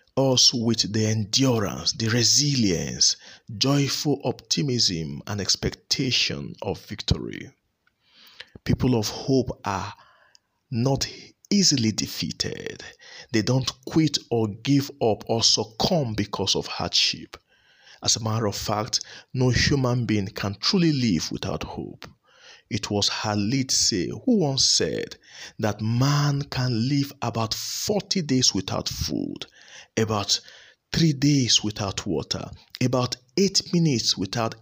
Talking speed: 115 wpm